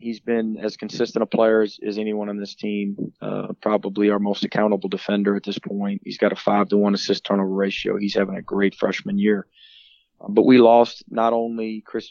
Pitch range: 100-110 Hz